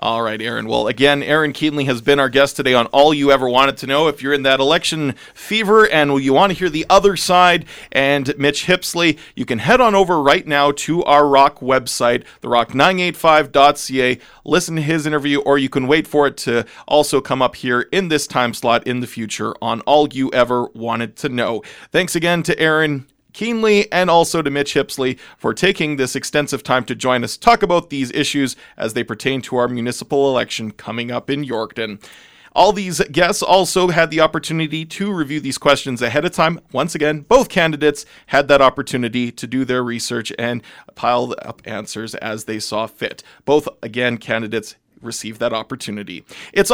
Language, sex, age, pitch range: English, male, 40-59, 125-170 Hz